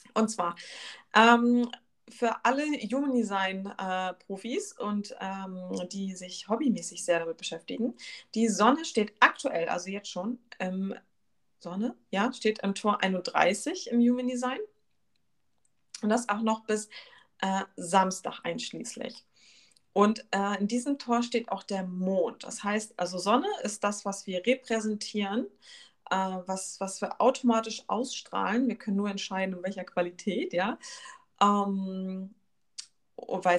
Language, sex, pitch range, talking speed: German, female, 185-235 Hz, 130 wpm